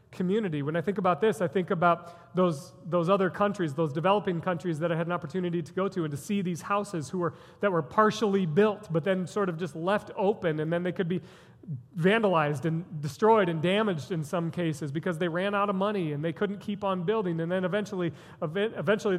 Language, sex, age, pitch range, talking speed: English, male, 40-59, 170-210 Hz, 220 wpm